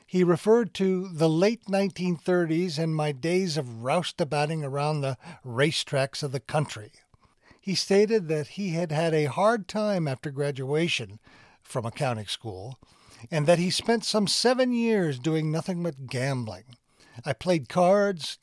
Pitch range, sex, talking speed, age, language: 125-175 Hz, male, 145 wpm, 60-79, English